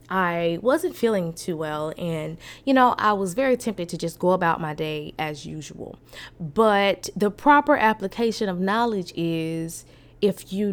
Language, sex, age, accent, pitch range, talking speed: English, female, 20-39, American, 165-215 Hz, 160 wpm